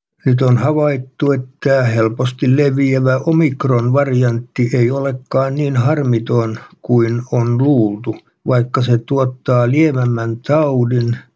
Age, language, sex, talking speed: 60-79, Finnish, male, 105 wpm